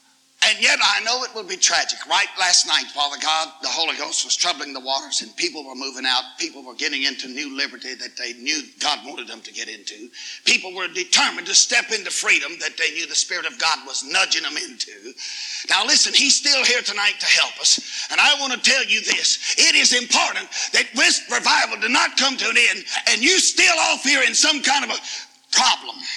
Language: English